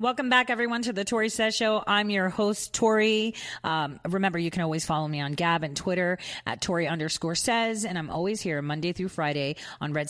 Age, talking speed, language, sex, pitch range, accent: 30-49, 210 wpm, English, female, 145-195 Hz, American